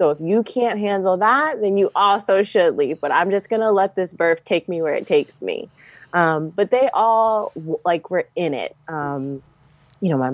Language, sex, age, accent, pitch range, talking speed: English, female, 20-39, American, 145-175 Hz, 215 wpm